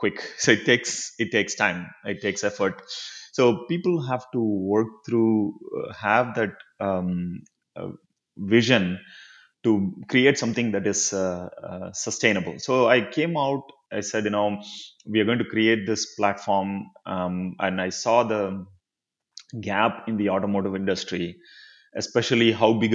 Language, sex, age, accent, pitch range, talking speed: English, male, 30-49, Indian, 95-115 Hz, 150 wpm